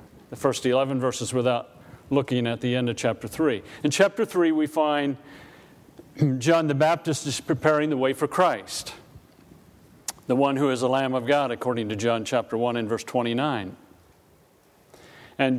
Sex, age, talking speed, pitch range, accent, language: male, 40-59, 165 wpm, 120-155 Hz, American, English